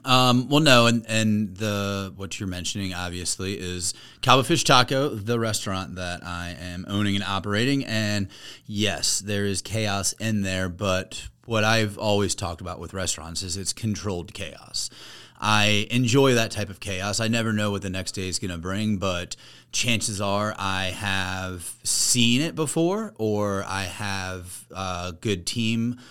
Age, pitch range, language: 30-49, 95-115 Hz, English